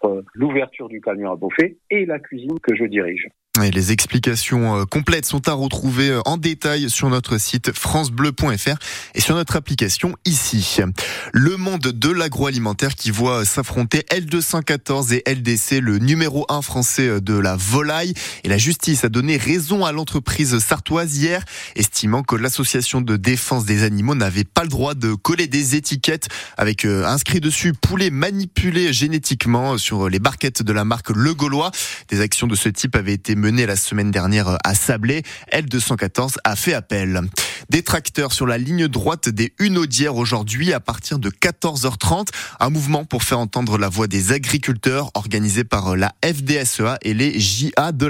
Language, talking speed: French, 165 wpm